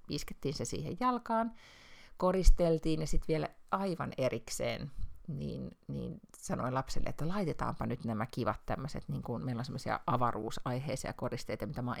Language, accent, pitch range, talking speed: Finnish, native, 130-205 Hz, 145 wpm